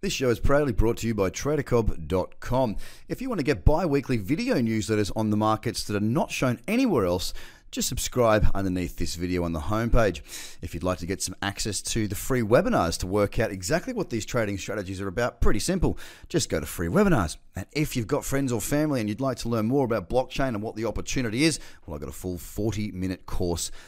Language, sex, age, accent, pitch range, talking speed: English, male, 30-49, Australian, 95-135 Hz, 225 wpm